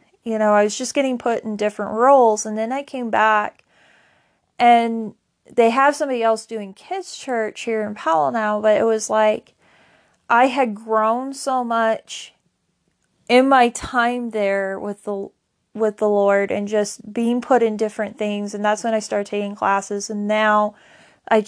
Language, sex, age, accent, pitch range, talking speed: English, female, 30-49, American, 210-240 Hz, 175 wpm